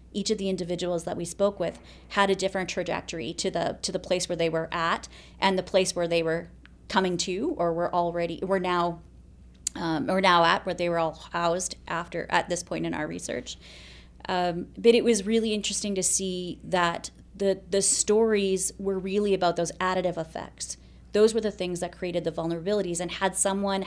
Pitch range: 170-200 Hz